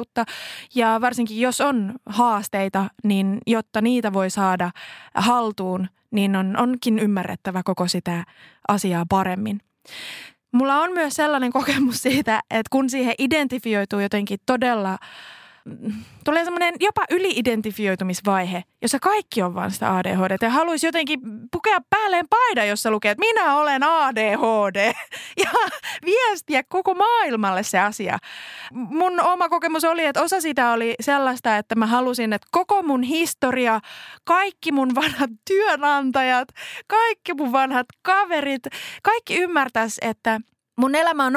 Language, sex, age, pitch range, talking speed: Finnish, female, 20-39, 210-310 Hz, 125 wpm